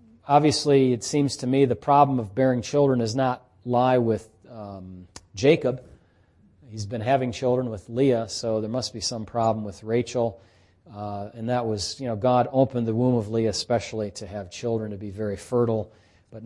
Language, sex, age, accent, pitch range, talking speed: English, male, 40-59, American, 105-145 Hz, 185 wpm